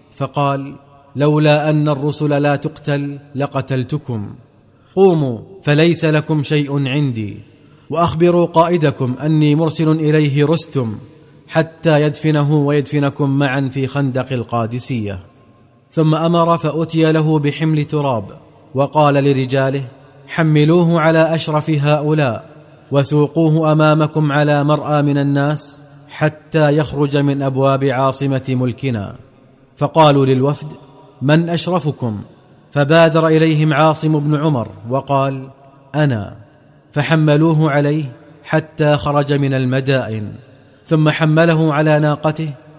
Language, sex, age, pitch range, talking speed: Arabic, male, 30-49, 135-155 Hz, 100 wpm